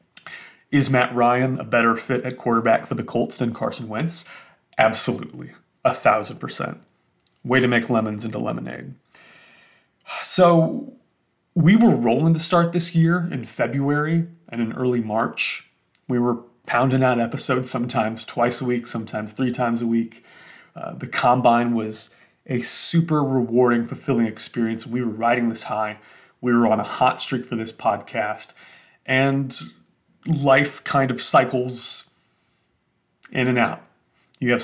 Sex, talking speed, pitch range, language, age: male, 145 wpm, 115-135 Hz, English, 30-49